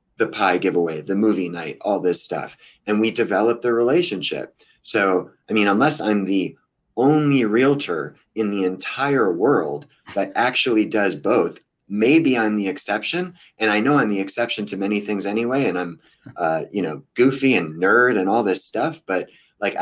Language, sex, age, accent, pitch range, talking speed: English, male, 30-49, American, 105-130 Hz, 175 wpm